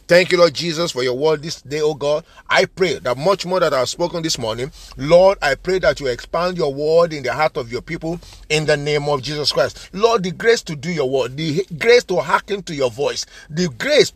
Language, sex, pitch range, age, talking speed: English, male, 115-155 Hz, 50-69, 245 wpm